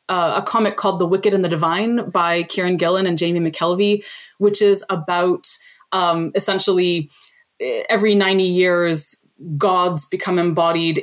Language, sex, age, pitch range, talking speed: English, female, 20-39, 175-215 Hz, 140 wpm